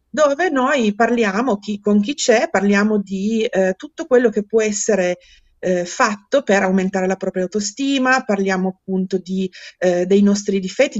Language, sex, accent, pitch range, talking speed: Italian, female, native, 195-230 Hz, 160 wpm